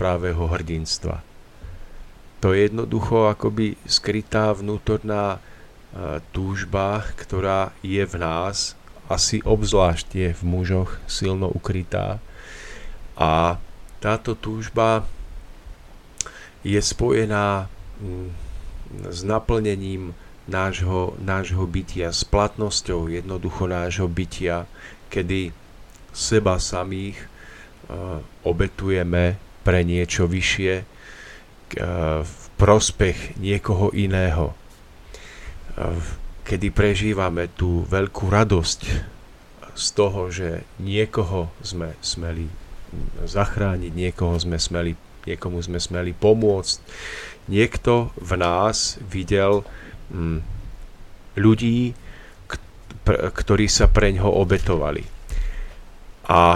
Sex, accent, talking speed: male, native, 80 wpm